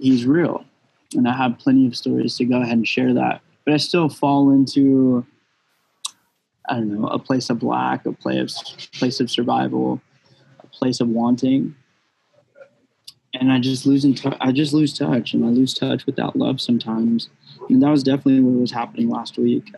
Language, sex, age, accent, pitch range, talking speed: English, male, 20-39, American, 120-140 Hz, 170 wpm